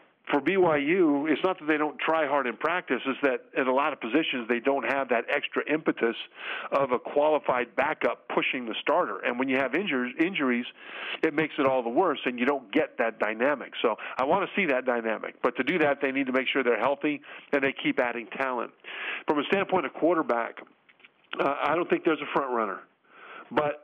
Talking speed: 215 wpm